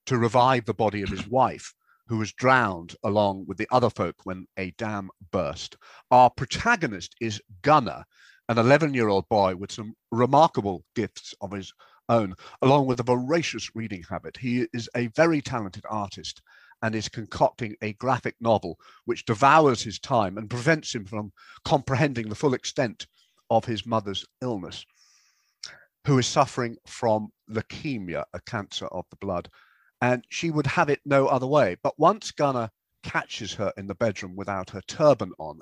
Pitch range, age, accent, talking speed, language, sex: 100-130 Hz, 50-69, British, 165 wpm, English, male